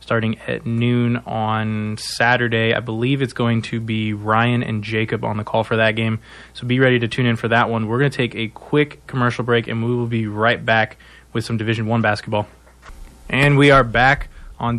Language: English